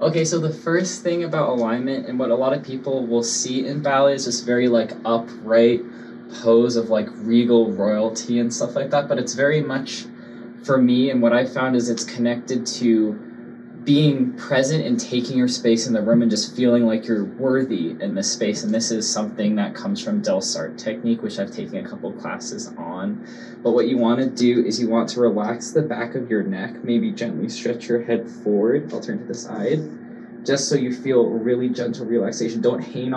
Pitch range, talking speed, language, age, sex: 115-130 Hz, 210 wpm, English, 20-39, male